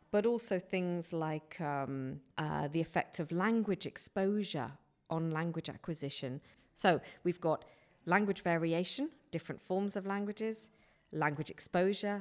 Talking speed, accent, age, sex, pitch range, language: 125 wpm, British, 50-69, female, 150-190 Hz, English